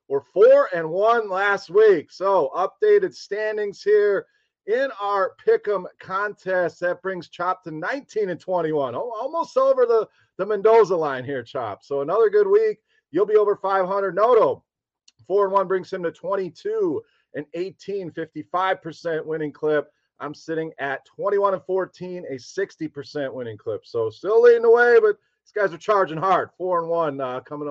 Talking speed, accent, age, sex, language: 175 wpm, American, 40-59, male, English